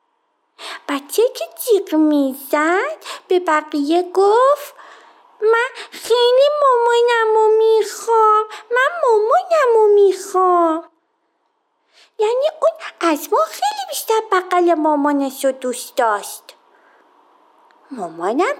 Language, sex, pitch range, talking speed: Persian, female, 280-415 Hz, 85 wpm